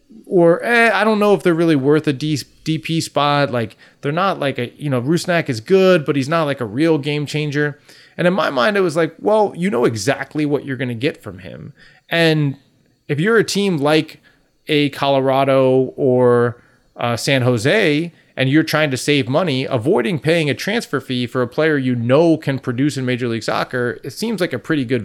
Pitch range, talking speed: 115-155 Hz, 210 wpm